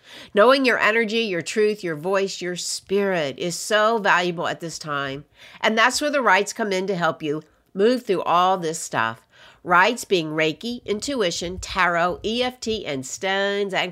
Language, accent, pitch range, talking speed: English, American, 165-230 Hz, 170 wpm